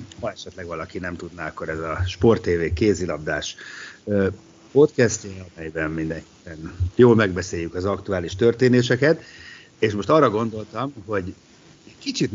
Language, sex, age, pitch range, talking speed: Hungarian, male, 60-79, 90-115 Hz, 120 wpm